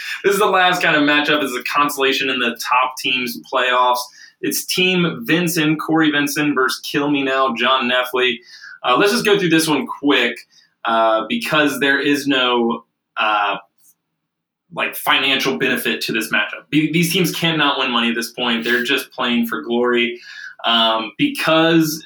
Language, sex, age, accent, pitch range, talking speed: English, male, 20-39, American, 115-160 Hz, 170 wpm